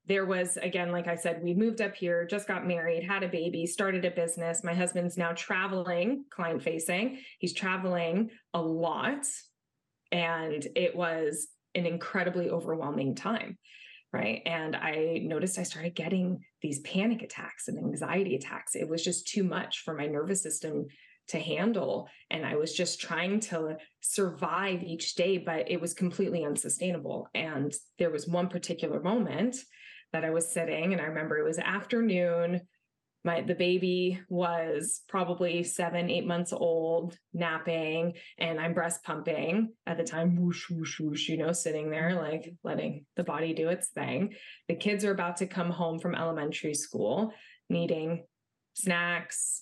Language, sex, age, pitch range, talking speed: English, female, 20-39, 165-185 Hz, 160 wpm